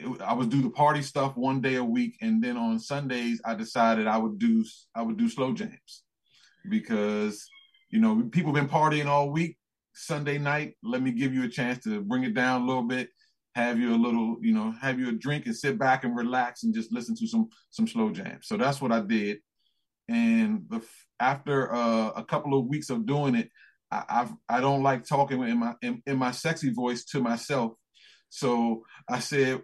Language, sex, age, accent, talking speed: English, male, 30-49, American, 215 wpm